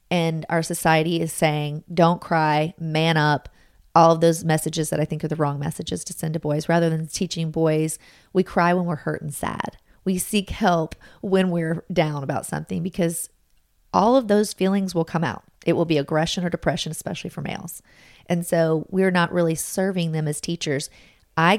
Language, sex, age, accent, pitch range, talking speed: English, female, 30-49, American, 155-180 Hz, 195 wpm